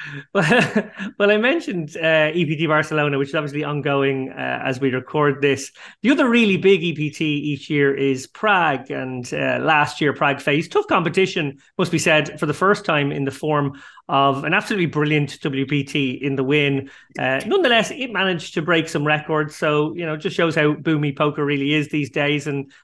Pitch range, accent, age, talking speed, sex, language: 145-175 Hz, Irish, 30-49, 190 wpm, male, English